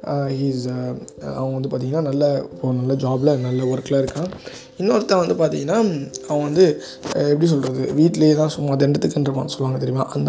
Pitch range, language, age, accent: 130-165 Hz, Tamil, 20-39, native